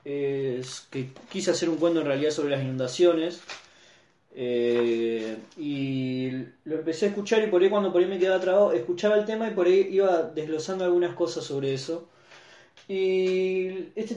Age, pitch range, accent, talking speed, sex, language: 20-39, 150-190 Hz, Argentinian, 170 wpm, male, Spanish